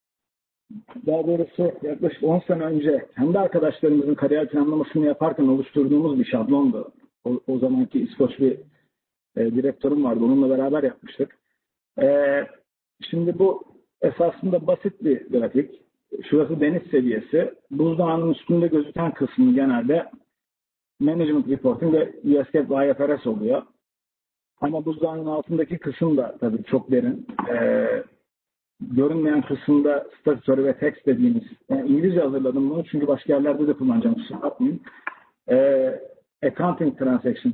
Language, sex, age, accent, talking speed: Turkish, male, 50-69, native, 120 wpm